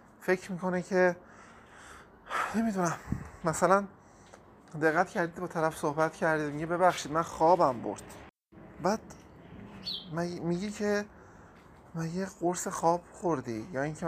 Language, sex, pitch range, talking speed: Persian, male, 135-180 Hz, 110 wpm